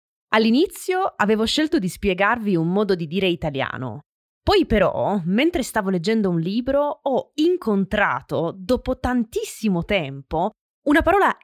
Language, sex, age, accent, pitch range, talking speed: Italian, female, 20-39, native, 175-290 Hz, 125 wpm